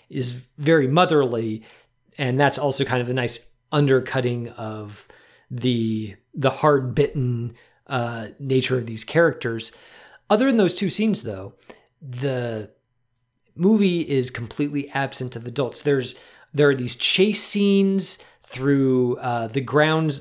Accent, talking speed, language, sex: American, 130 wpm, English, male